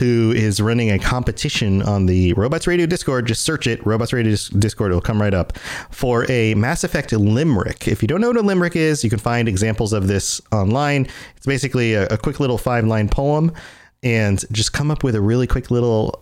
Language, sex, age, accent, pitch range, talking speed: English, male, 30-49, American, 105-145 Hz, 215 wpm